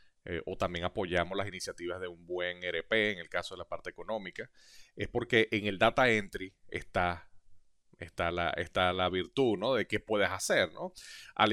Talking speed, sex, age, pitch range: 185 wpm, male, 30-49, 100-125 Hz